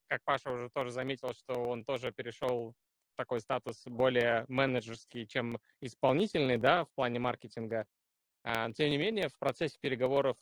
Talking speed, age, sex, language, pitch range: 150 wpm, 20-39, male, Russian, 120-145 Hz